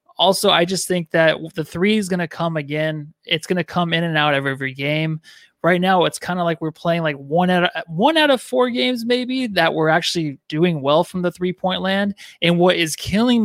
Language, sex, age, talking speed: English, male, 20-39, 230 wpm